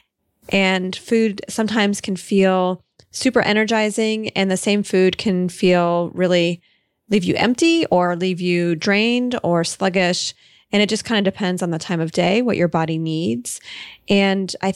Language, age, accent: English, 20-39, American